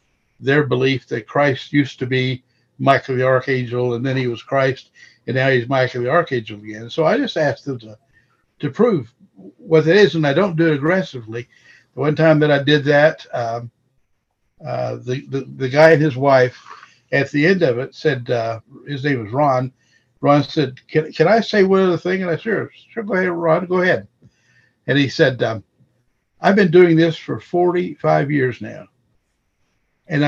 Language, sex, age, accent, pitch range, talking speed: English, male, 60-79, American, 125-160 Hz, 195 wpm